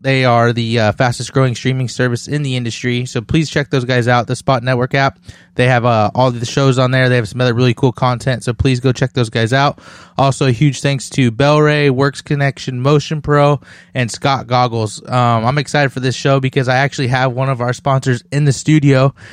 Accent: American